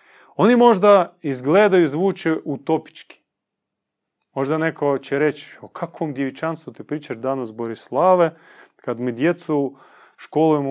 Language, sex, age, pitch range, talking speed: Croatian, male, 30-49, 135-185 Hz, 120 wpm